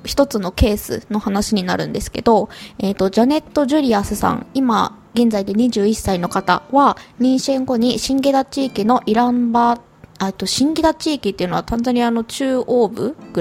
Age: 20-39